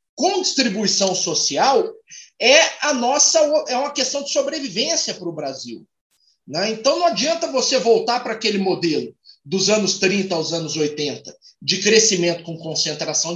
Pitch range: 180-240 Hz